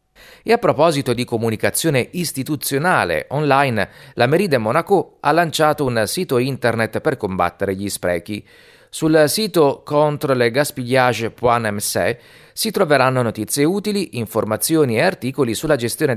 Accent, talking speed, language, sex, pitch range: native, 120 wpm, Italian, male, 120-165 Hz